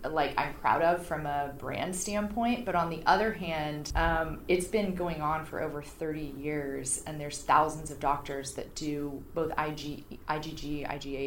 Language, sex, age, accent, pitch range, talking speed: English, female, 30-49, American, 150-170 Hz, 175 wpm